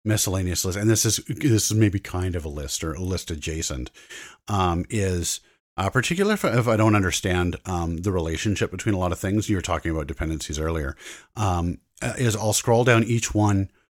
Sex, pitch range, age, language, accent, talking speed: male, 85-105 Hz, 40-59, English, American, 200 wpm